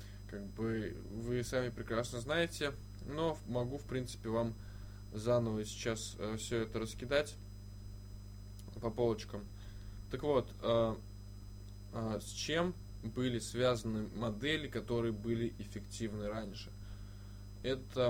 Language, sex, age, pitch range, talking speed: Russian, male, 10-29, 100-120 Hz, 105 wpm